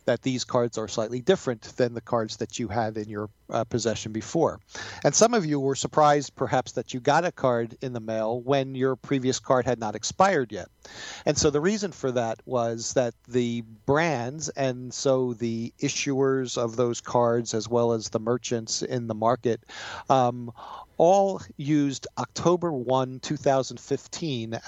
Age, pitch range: 40-59, 115-135 Hz